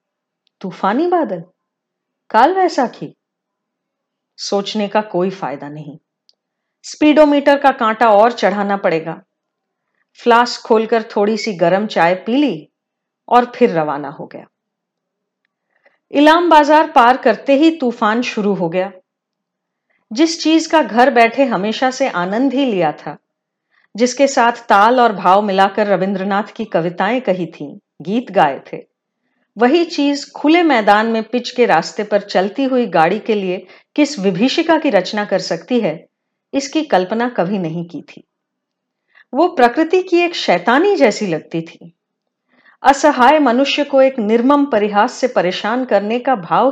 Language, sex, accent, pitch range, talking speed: Hindi, female, native, 195-270 Hz, 140 wpm